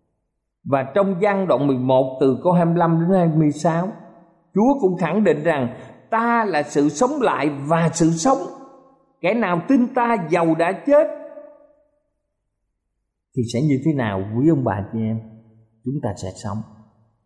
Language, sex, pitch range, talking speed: Vietnamese, male, 120-180 Hz, 155 wpm